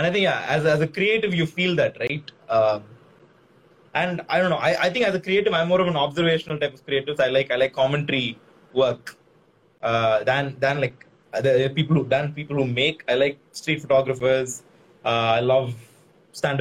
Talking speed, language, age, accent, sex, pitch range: 210 wpm, Tamil, 20-39, native, male, 135-175 Hz